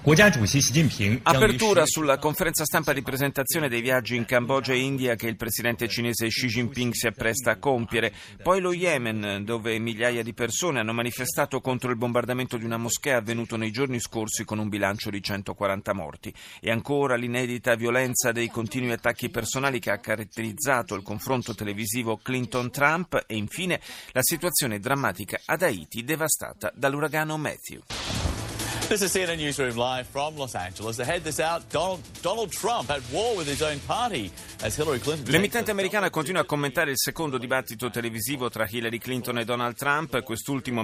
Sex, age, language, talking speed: male, 40-59, Italian, 130 wpm